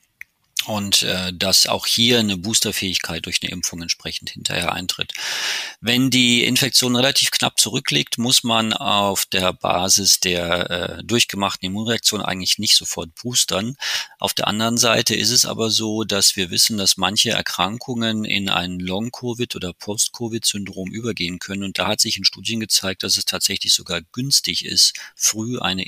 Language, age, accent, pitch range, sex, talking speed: German, 40-59, German, 90-115 Hz, male, 160 wpm